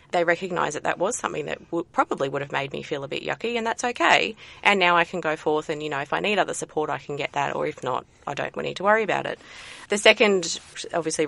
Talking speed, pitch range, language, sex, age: 265 wpm, 160-210 Hz, English, female, 30-49